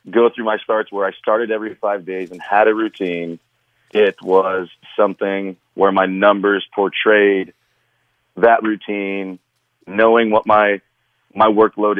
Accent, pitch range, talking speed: American, 95-110 Hz, 140 wpm